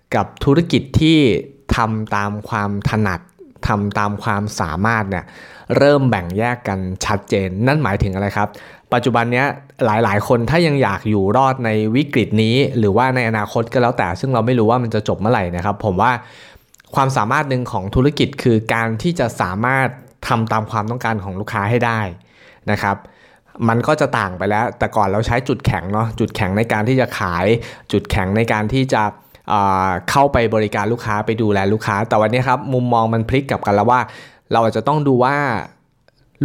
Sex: male